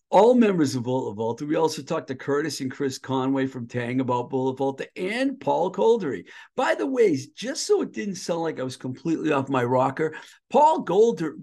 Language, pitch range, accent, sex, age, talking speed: English, 130-190 Hz, American, male, 50-69, 200 wpm